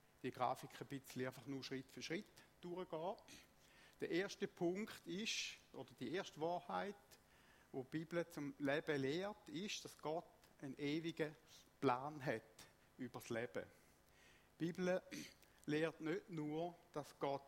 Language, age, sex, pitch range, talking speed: German, 60-79, male, 130-170 Hz, 135 wpm